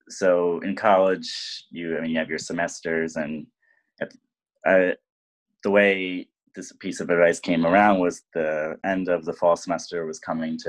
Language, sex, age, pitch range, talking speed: English, male, 20-39, 80-90 Hz, 175 wpm